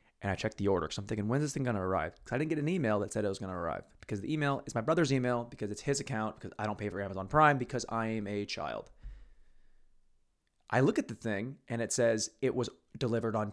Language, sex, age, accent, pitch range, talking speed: English, male, 20-39, American, 100-140 Hz, 270 wpm